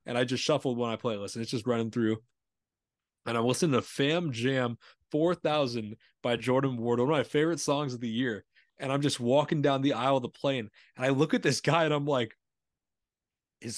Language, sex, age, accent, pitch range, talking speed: English, male, 20-39, American, 110-135 Hz, 220 wpm